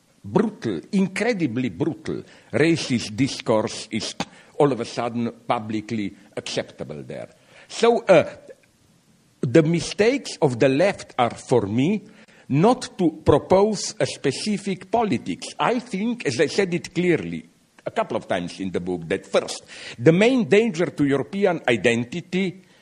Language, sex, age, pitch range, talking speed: English, male, 60-79, 125-190 Hz, 135 wpm